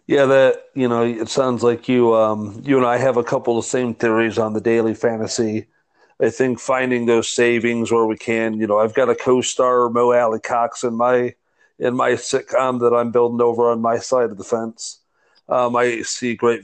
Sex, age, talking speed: male, 40-59, 215 wpm